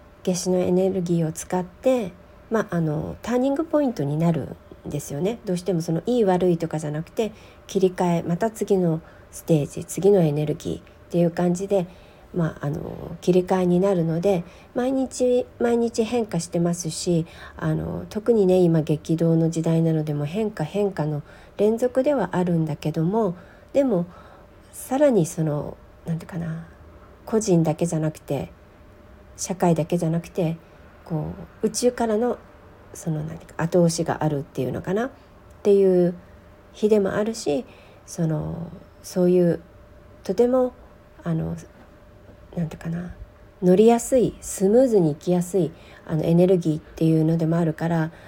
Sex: female